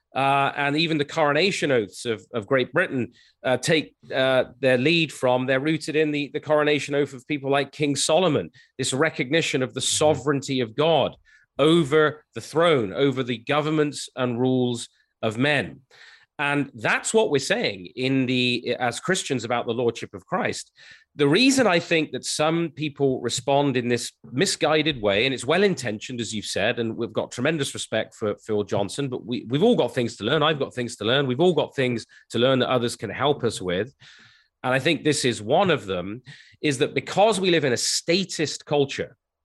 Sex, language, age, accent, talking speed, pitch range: male, English, 30-49, British, 195 wpm, 120-155 Hz